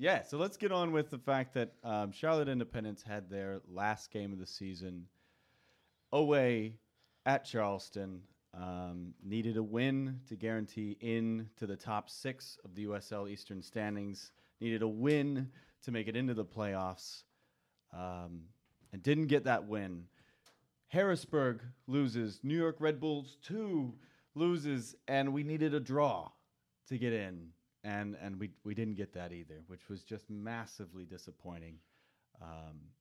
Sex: male